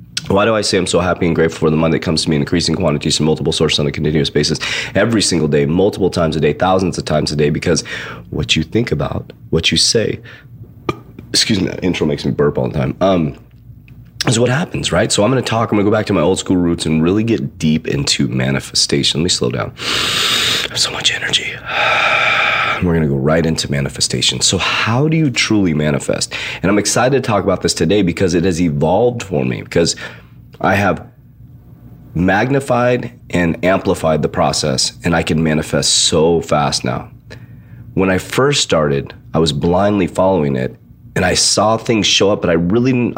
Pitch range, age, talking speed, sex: 80-120 Hz, 30-49, 205 wpm, male